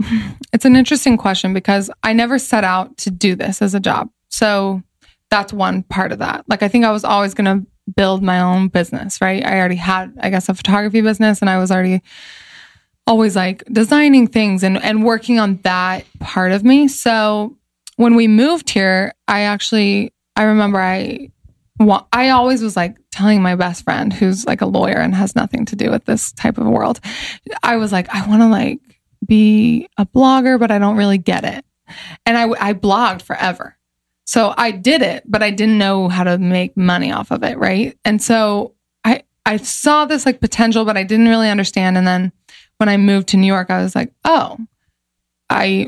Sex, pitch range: female, 190-230 Hz